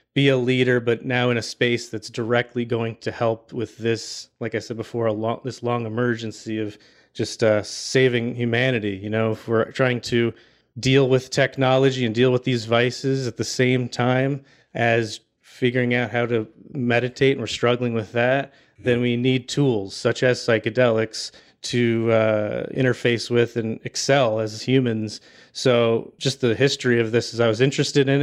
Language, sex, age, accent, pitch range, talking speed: English, male, 30-49, American, 115-130 Hz, 180 wpm